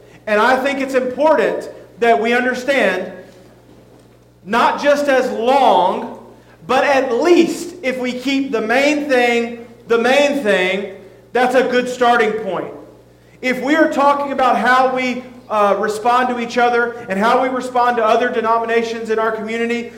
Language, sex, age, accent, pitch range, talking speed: English, male, 40-59, American, 225-265 Hz, 155 wpm